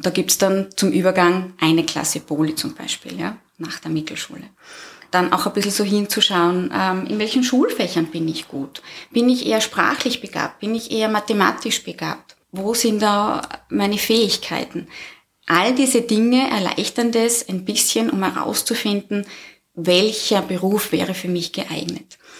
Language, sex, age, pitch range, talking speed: German, female, 20-39, 185-235 Hz, 155 wpm